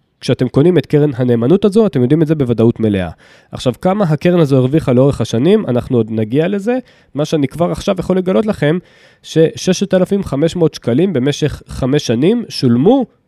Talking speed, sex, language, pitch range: 165 wpm, male, Hebrew, 125-170 Hz